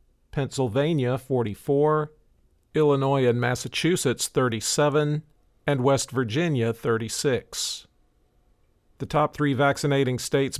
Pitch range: 125-145 Hz